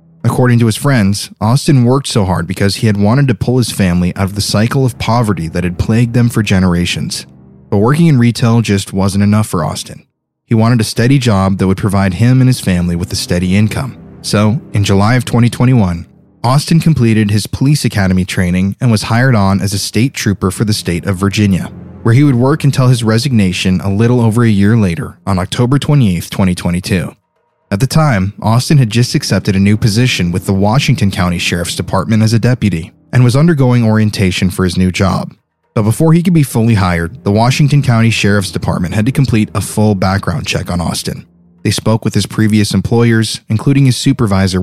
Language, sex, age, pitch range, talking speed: English, male, 20-39, 95-125 Hz, 205 wpm